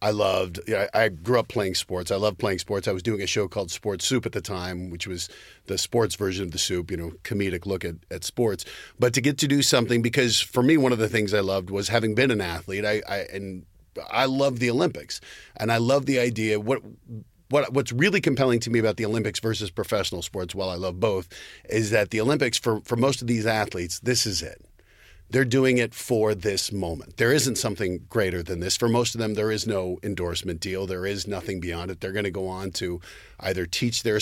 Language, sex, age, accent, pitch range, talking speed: English, male, 40-59, American, 95-120 Hz, 235 wpm